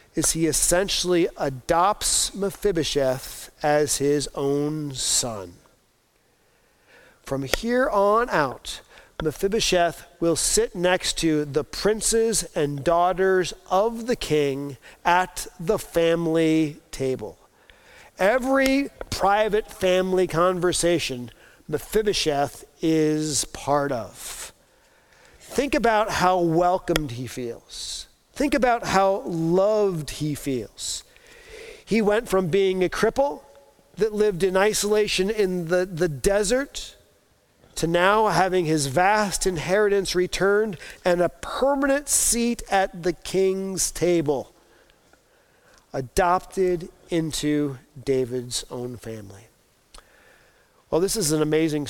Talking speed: 100 wpm